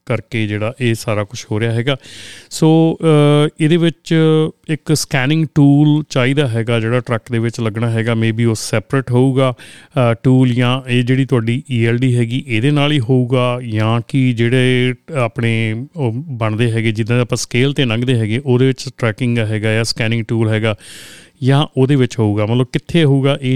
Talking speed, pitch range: 140 wpm, 115-140 Hz